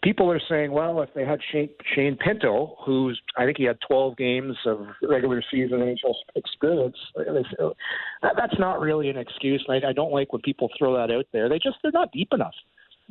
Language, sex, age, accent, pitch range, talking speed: English, male, 40-59, American, 120-150 Hz, 190 wpm